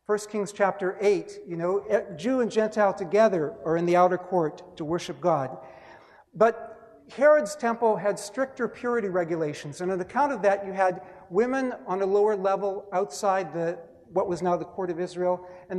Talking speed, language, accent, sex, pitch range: 180 wpm, English, American, male, 180-225 Hz